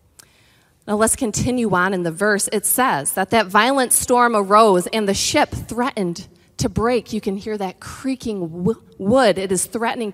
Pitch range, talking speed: 170-250 Hz, 170 wpm